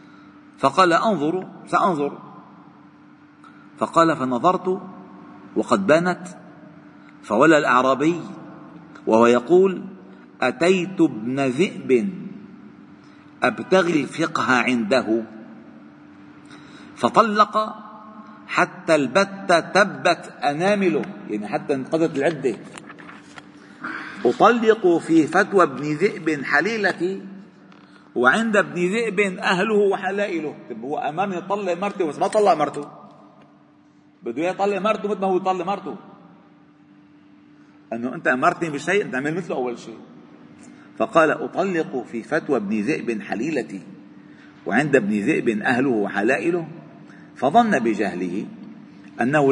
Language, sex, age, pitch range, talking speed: Arabic, male, 50-69, 130-190 Hz, 90 wpm